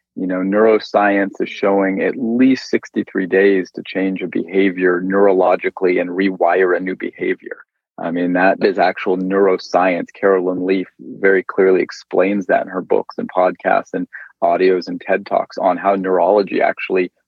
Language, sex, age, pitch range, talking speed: English, male, 30-49, 95-105 Hz, 155 wpm